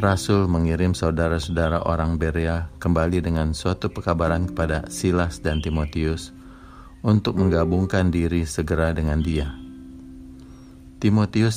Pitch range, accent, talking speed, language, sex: 80-90 Hz, native, 105 wpm, Indonesian, male